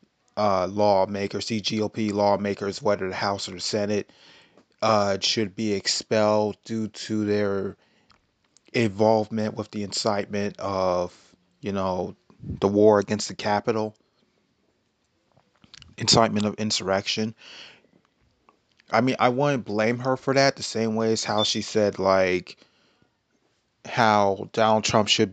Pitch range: 105-125 Hz